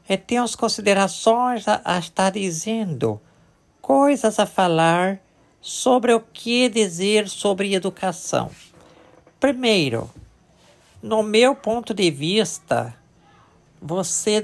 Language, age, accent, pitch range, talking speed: Portuguese, 50-69, Brazilian, 185-235 Hz, 100 wpm